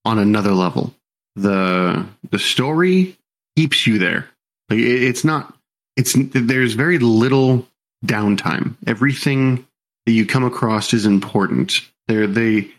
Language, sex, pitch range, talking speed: English, male, 105-130 Hz, 115 wpm